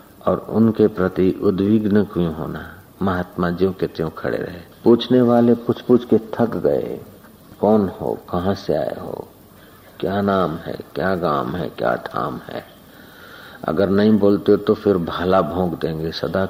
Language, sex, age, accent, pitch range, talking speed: Hindi, male, 60-79, native, 85-100 Hz, 155 wpm